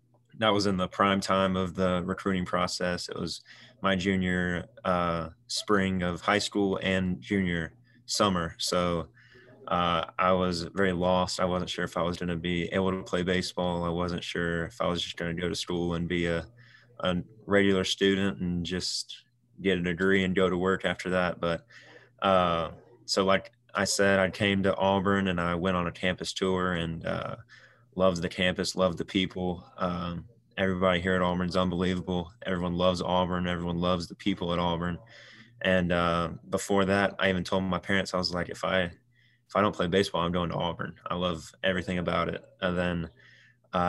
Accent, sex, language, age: American, male, English, 20-39